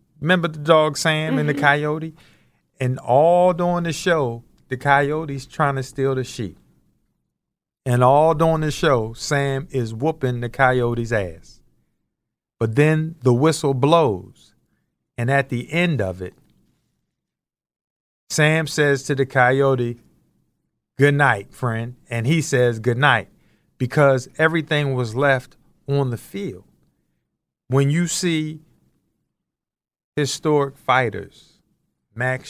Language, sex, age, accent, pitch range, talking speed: English, male, 50-69, American, 115-150 Hz, 125 wpm